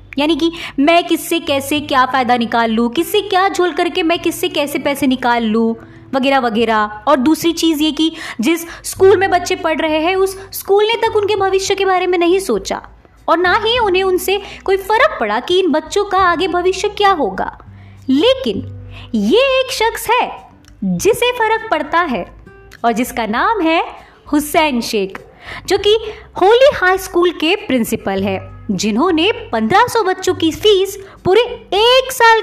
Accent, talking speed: native, 170 wpm